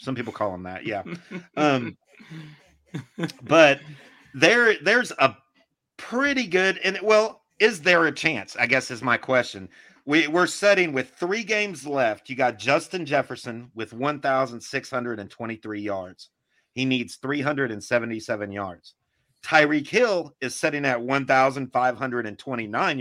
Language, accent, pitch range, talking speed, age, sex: English, American, 110-150 Hz, 125 wpm, 40-59, male